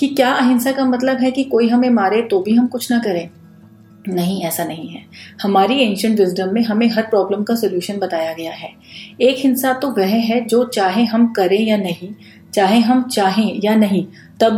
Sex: female